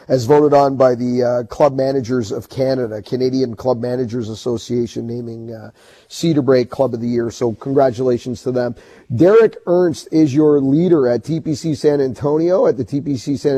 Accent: American